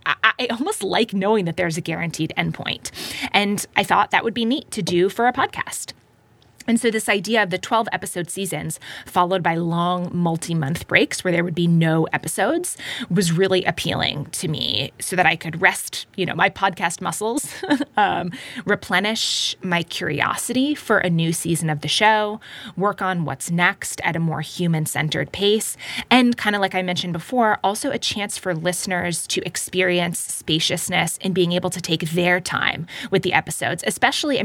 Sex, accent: female, American